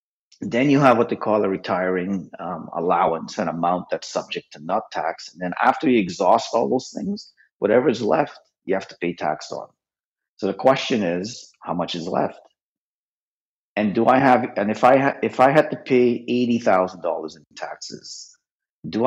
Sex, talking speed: male, 190 wpm